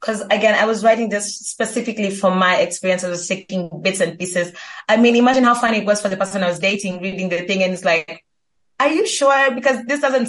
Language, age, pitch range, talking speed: English, 20-39, 185-225 Hz, 240 wpm